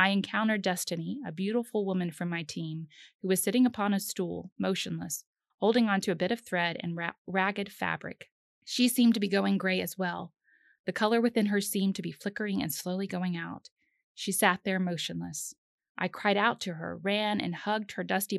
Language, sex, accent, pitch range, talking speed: English, female, American, 175-215 Hz, 200 wpm